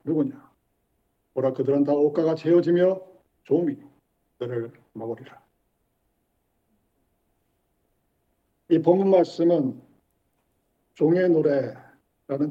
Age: 50-69